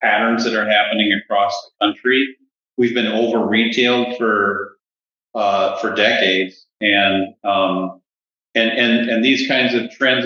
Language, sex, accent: English, male, American